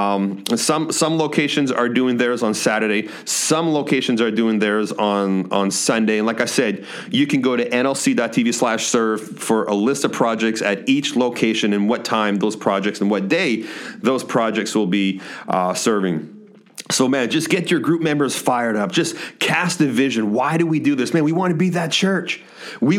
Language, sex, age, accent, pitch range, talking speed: English, male, 30-49, American, 110-160 Hz, 200 wpm